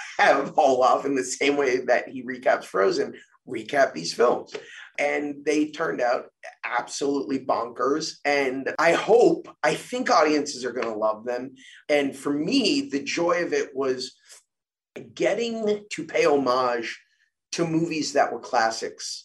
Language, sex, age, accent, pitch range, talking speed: English, male, 30-49, American, 130-185 Hz, 145 wpm